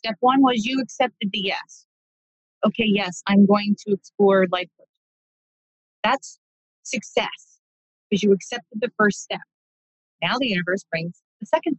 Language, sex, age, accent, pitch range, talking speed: English, female, 30-49, American, 200-255 Hz, 145 wpm